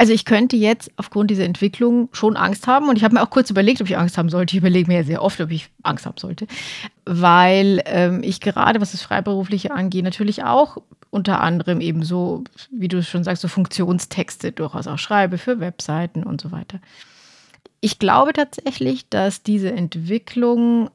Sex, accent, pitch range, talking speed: female, German, 175-200 Hz, 190 wpm